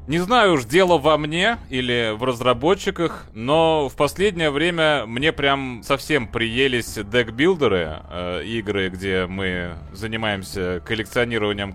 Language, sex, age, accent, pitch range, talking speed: Russian, male, 30-49, native, 100-145 Hz, 115 wpm